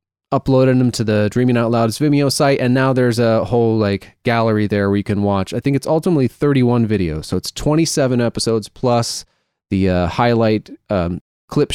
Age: 30-49